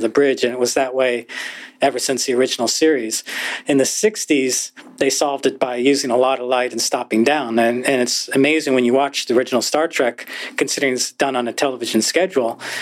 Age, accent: 40-59, American